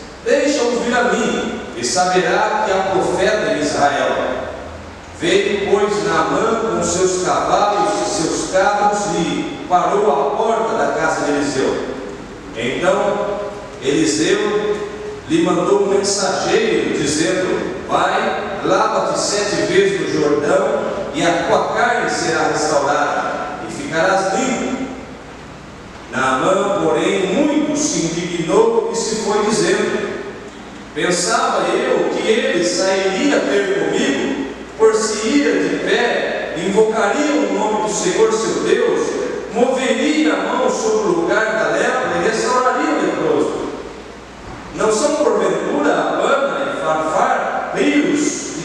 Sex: male